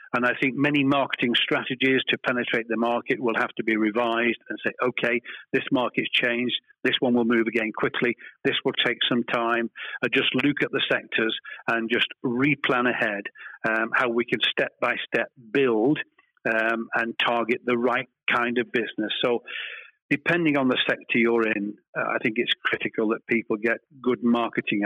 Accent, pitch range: British, 115-145 Hz